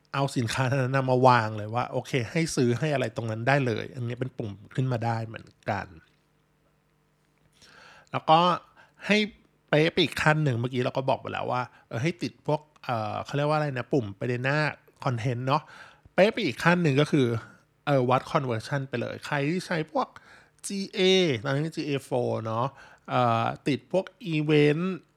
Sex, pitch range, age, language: male, 120-150 Hz, 20-39, Thai